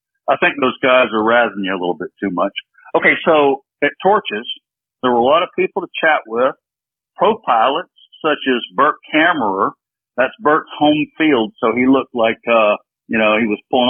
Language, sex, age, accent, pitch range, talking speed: English, male, 50-69, American, 125-160 Hz, 195 wpm